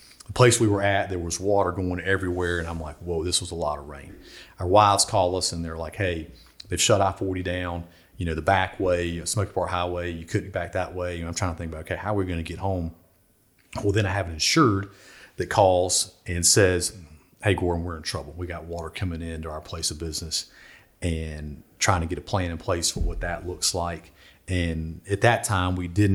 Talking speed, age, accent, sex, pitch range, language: 240 wpm, 40-59, American, male, 85-100 Hz, English